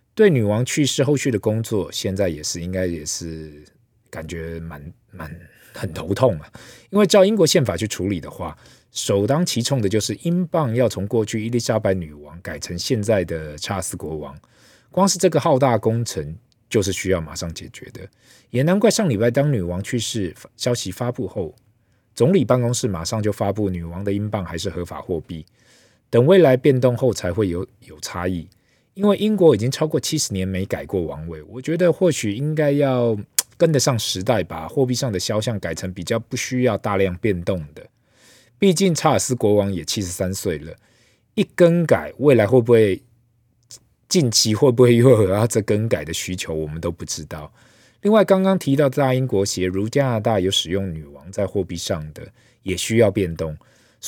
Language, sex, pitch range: Chinese, male, 95-130 Hz